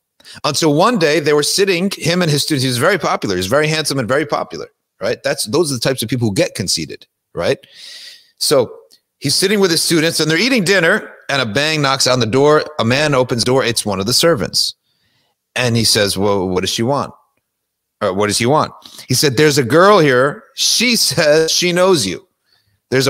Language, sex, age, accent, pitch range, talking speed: English, male, 40-59, American, 115-175 Hz, 220 wpm